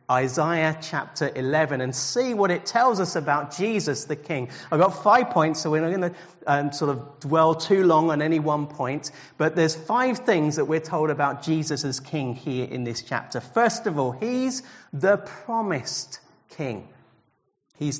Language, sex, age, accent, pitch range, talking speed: English, male, 40-59, British, 145-210 Hz, 180 wpm